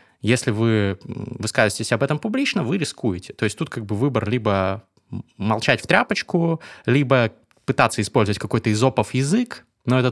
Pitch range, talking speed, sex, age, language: 105-130 Hz, 155 wpm, male, 20-39, Russian